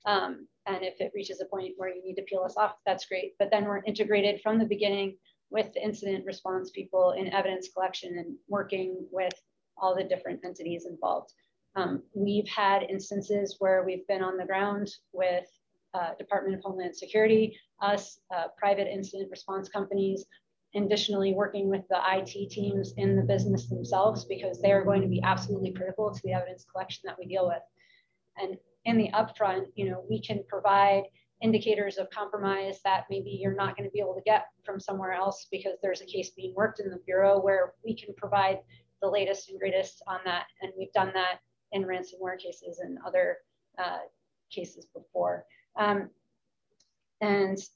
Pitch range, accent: 185-205 Hz, American